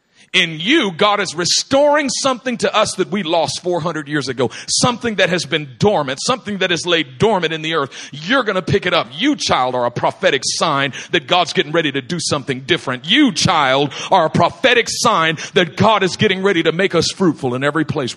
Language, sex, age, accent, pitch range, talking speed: English, male, 40-59, American, 140-205 Hz, 215 wpm